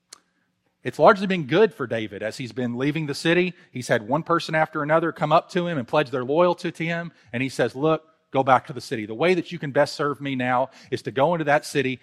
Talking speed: 260 wpm